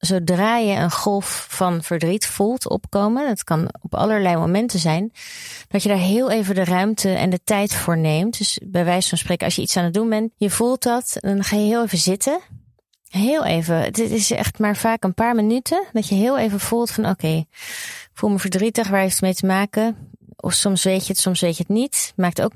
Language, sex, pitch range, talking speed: English, female, 170-200 Hz, 225 wpm